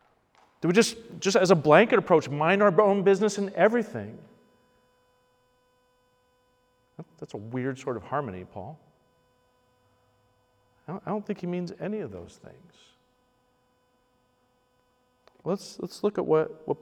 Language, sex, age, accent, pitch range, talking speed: English, male, 40-59, American, 125-195 Hz, 135 wpm